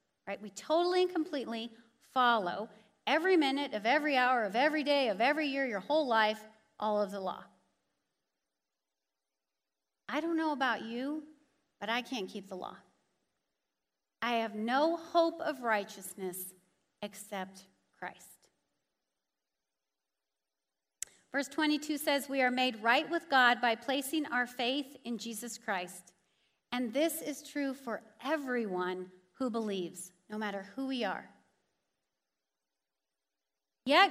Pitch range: 190-280 Hz